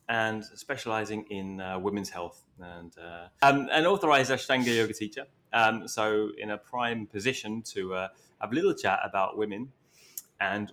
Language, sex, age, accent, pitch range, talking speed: English, male, 20-39, British, 100-120 Hz, 155 wpm